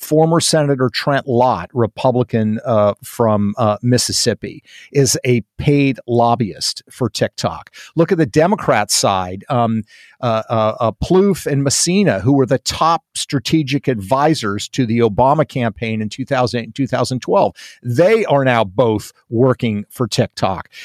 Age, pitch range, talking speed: 50-69, 115-160 Hz, 140 wpm